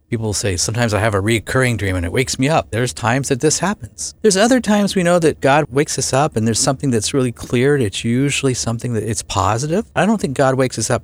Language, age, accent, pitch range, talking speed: English, 50-69, American, 100-140 Hz, 260 wpm